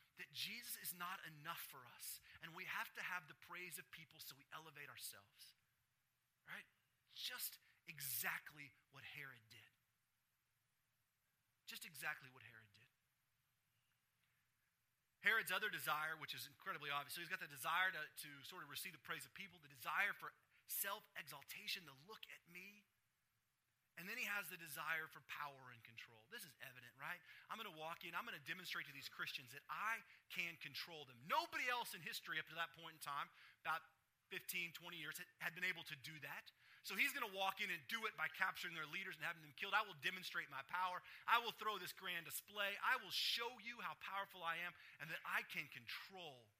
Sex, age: male, 30-49